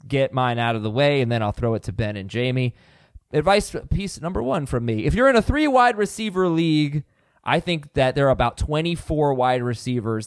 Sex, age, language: male, 20-39, English